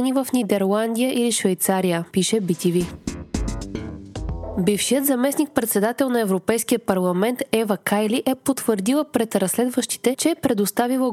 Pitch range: 195-250 Hz